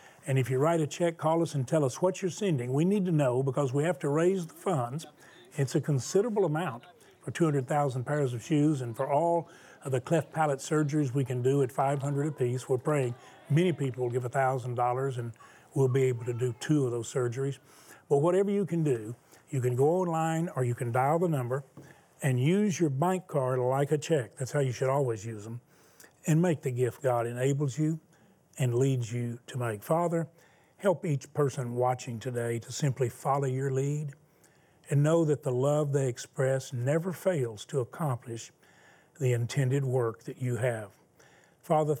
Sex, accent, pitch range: male, American, 125-155 Hz